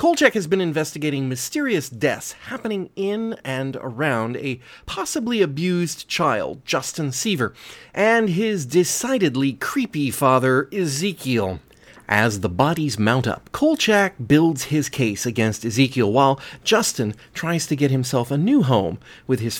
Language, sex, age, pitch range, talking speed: English, male, 30-49, 120-175 Hz, 135 wpm